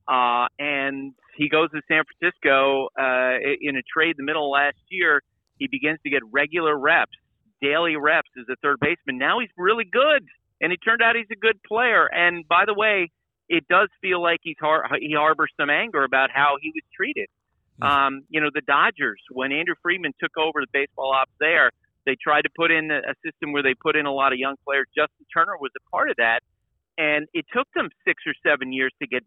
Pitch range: 135-170 Hz